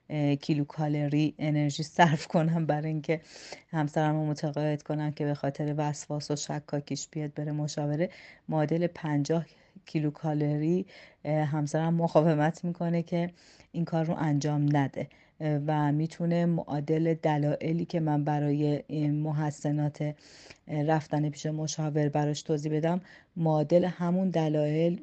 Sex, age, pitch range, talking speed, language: female, 30-49, 145-165 Hz, 115 wpm, Persian